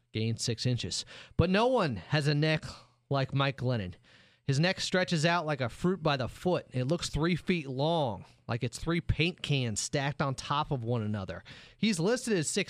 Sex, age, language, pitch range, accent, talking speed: male, 30-49, English, 120-170 Hz, American, 195 wpm